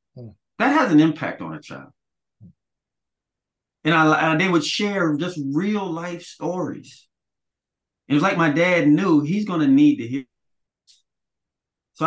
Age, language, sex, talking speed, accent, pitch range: 30-49, English, male, 140 wpm, American, 105-150 Hz